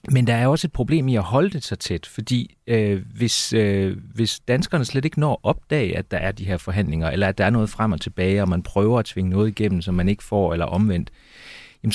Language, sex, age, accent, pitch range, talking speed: Danish, male, 30-49, native, 95-120 Hz, 250 wpm